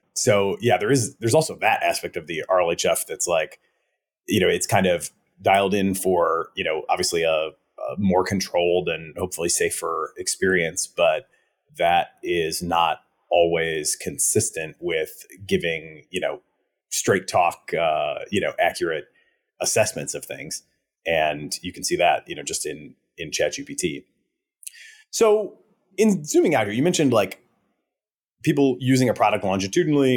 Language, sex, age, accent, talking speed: English, male, 30-49, American, 150 wpm